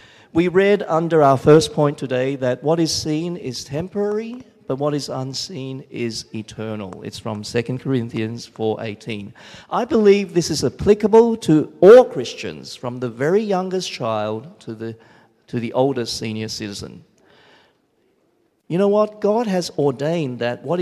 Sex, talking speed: male, 155 wpm